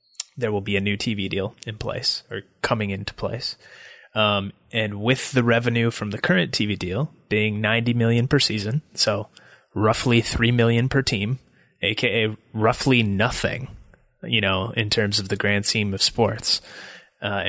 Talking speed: 165 wpm